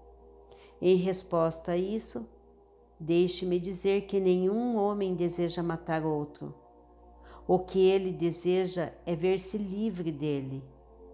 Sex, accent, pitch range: female, Brazilian, 165-200 Hz